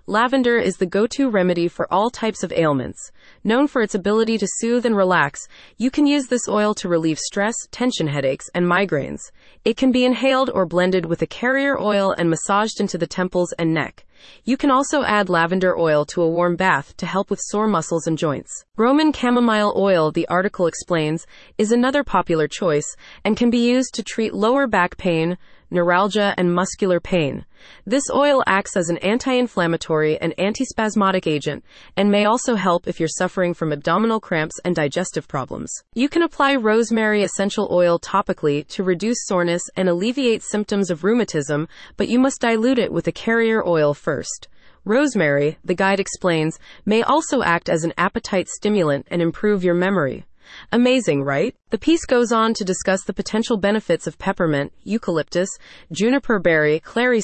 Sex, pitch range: female, 170-230 Hz